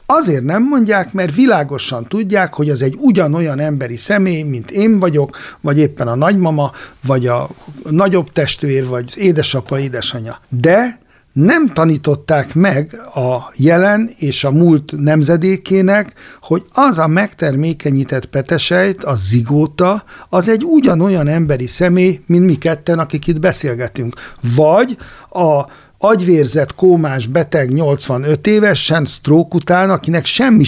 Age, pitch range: 60-79, 145-185 Hz